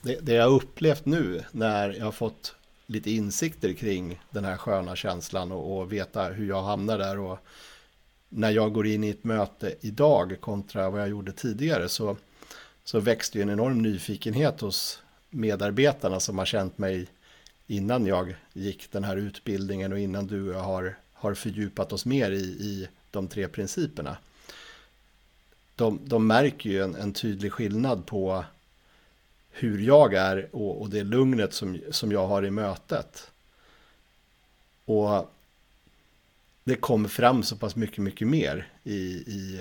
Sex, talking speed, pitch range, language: male, 155 wpm, 95-110 Hz, Swedish